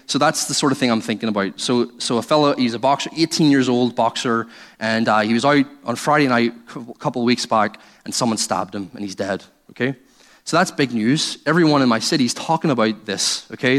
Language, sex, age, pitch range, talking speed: English, male, 20-39, 115-150 Hz, 240 wpm